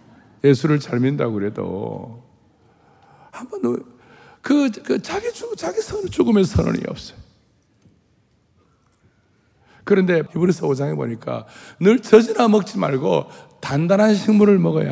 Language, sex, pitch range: Korean, male, 145-210 Hz